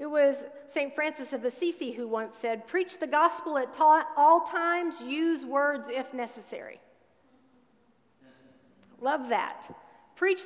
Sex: female